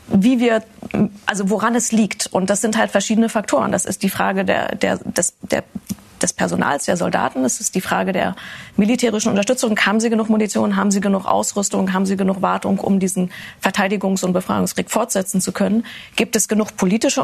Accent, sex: German, female